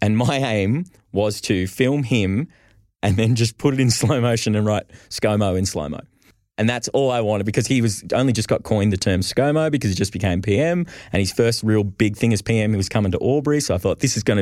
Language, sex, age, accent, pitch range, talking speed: English, male, 20-39, Australian, 100-125 Hz, 240 wpm